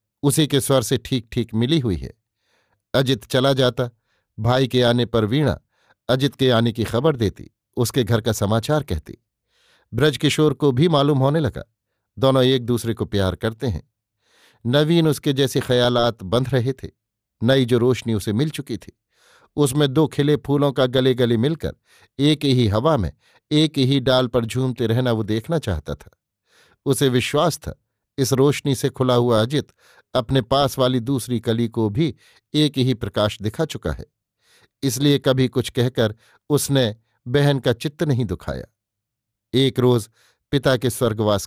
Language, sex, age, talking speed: Hindi, male, 50-69, 165 wpm